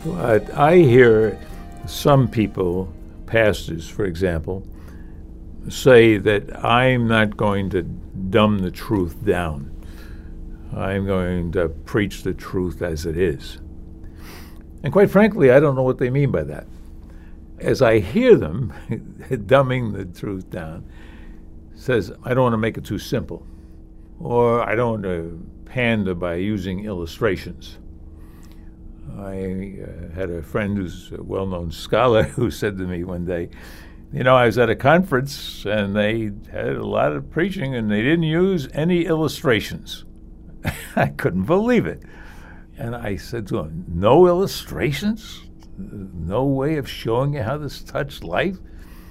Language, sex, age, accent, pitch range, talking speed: English, male, 60-79, American, 80-120 Hz, 145 wpm